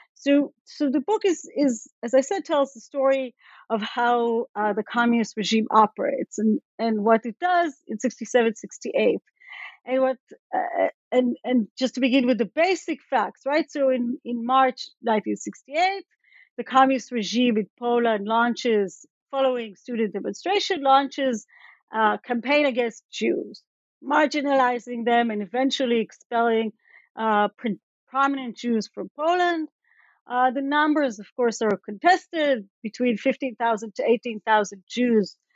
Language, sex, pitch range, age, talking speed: English, female, 225-280 Hz, 40-59, 140 wpm